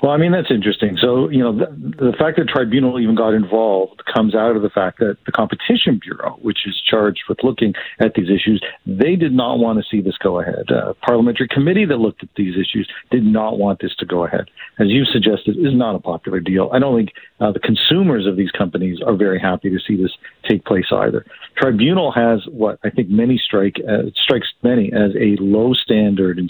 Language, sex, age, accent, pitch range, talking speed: English, male, 50-69, American, 105-135 Hz, 225 wpm